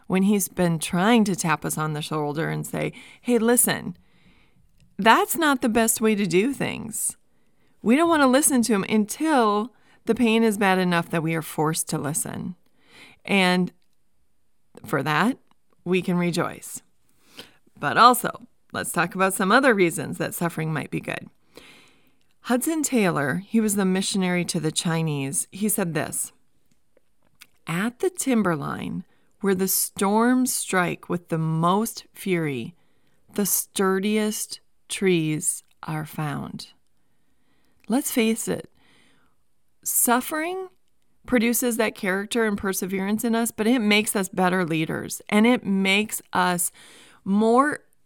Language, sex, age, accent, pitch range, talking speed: English, female, 30-49, American, 180-235 Hz, 135 wpm